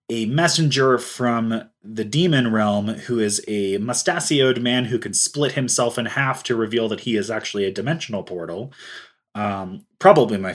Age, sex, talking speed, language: 20-39, male, 165 wpm, English